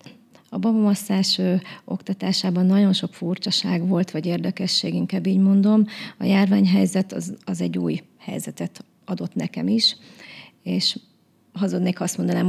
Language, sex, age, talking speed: Hungarian, female, 30-49, 125 wpm